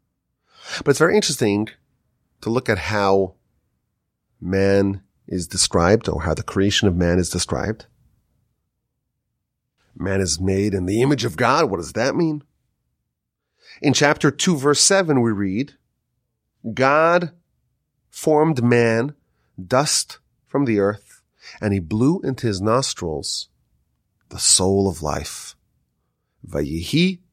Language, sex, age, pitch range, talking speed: English, male, 30-49, 95-135 Hz, 125 wpm